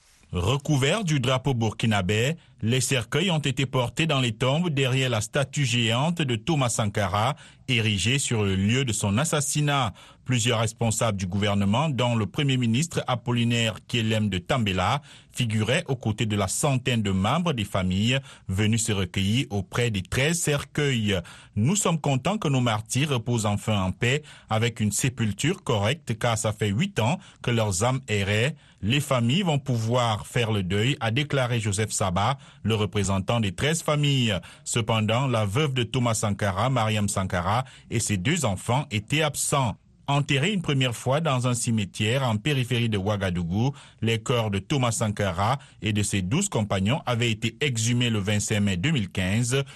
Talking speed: 165 wpm